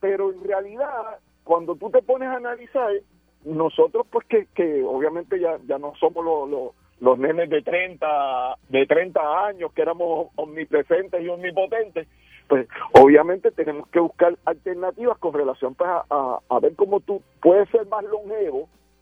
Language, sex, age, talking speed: Spanish, male, 50-69, 160 wpm